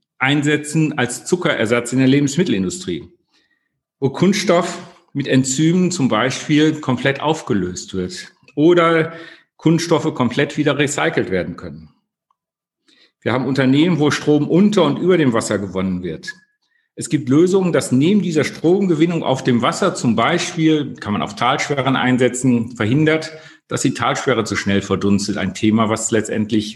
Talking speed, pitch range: 140 wpm, 120-160 Hz